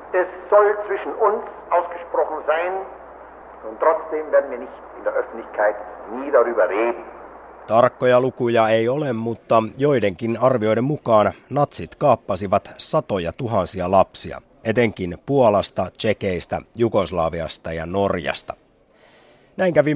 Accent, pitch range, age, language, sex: native, 100-140 Hz, 60-79, Finnish, male